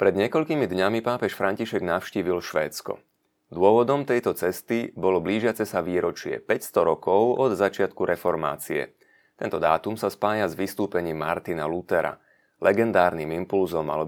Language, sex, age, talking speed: Slovak, male, 30-49, 130 wpm